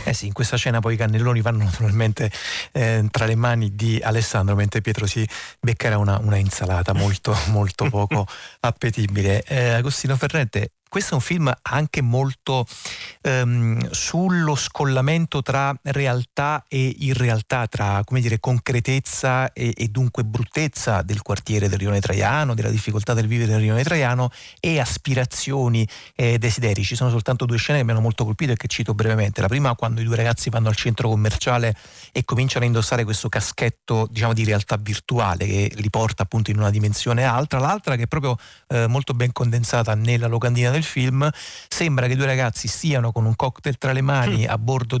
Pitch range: 110-130 Hz